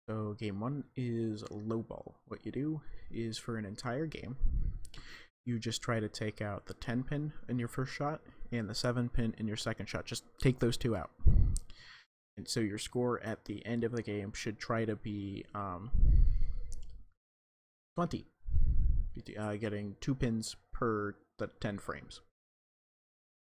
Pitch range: 100-120 Hz